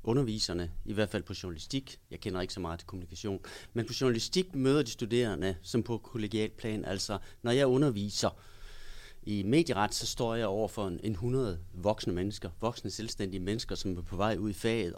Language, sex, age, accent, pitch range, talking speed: Danish, male, 30-49, native, 100-130 Hz, 185 wpm